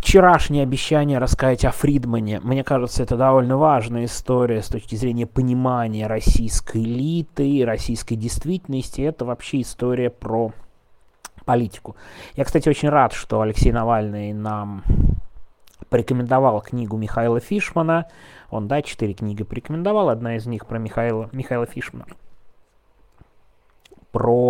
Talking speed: 120 wpm